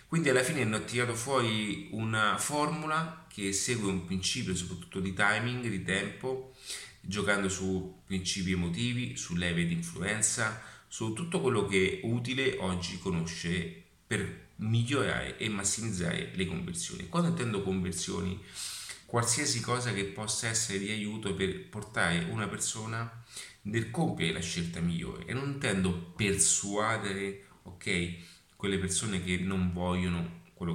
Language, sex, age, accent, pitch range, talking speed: Italian, male, 30-49, native, 90-115 Hz, 135 wpm